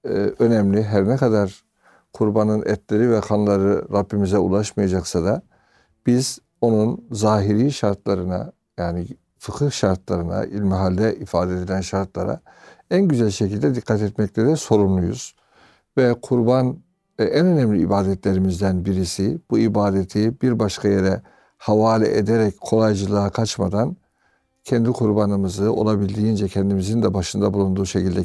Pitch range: 95-115 Hz